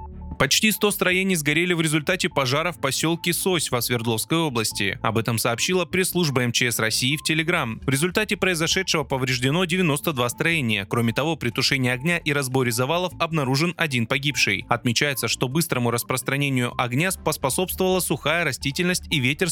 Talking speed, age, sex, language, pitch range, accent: 150 wpm, 20-39, male, Russian, 125-175 Hz, native